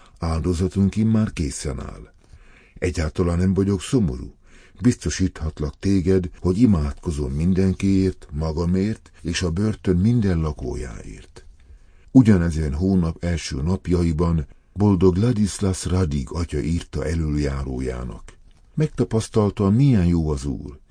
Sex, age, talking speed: male, 50-69, 100 wpm